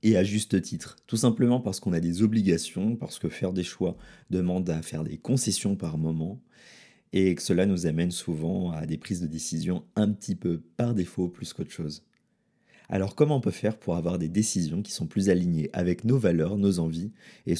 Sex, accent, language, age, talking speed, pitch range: male, French, French, 30-49, 210 wpm, 90-110 Hz